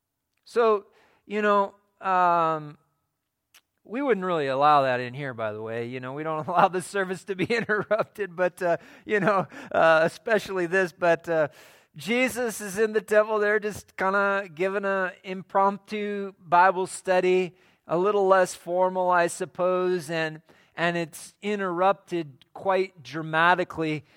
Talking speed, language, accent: 145 wpm, English, American